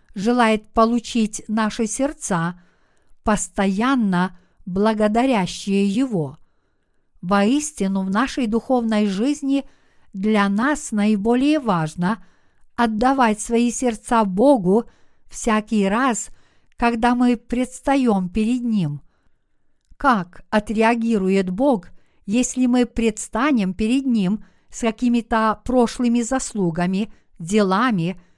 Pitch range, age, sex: 200-250 Hz, 50-69, female